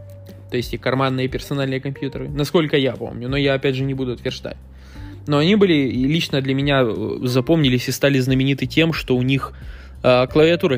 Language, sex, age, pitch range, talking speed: Russian, male, 20-39, 115-150 Hz, 185 wpm